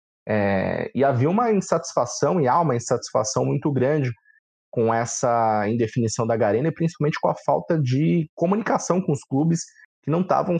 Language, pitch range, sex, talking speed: Portuguese, 115-165 Hz, male, 160 wpm